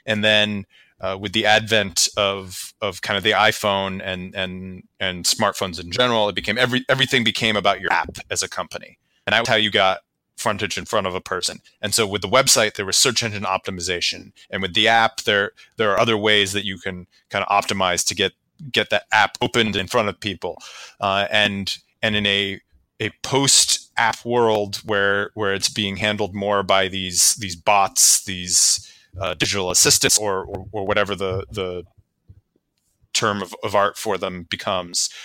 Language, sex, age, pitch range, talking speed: English, male, 30-49, 95-110 Hz, 190 wpm